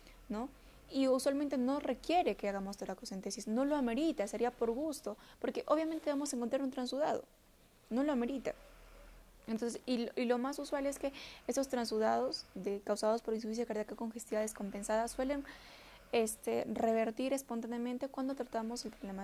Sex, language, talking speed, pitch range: female, Spanish, 155 wpm, 210-250 Hz